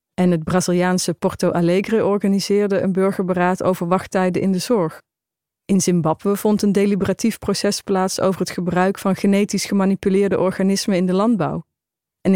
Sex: female